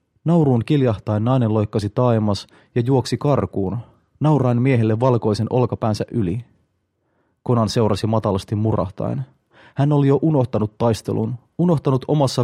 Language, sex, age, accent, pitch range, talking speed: Finnish, male, 30-49, native, 105-125 Hz, 115 wpm